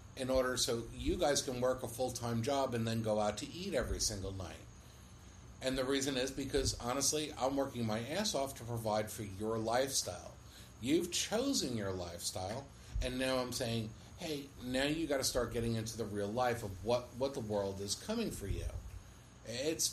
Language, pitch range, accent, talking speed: English, 110-150 Hz, American, 195 wpm